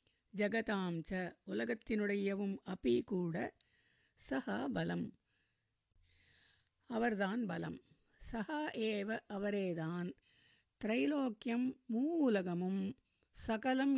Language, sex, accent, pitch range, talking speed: Tamil, female, native, 185-235 Hz, 65 wpm